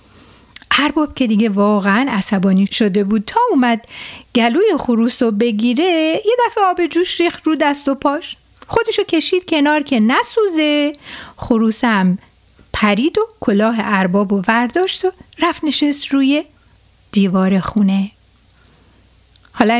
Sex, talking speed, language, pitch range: female, 125 wpm, Persian, 215-335 Hz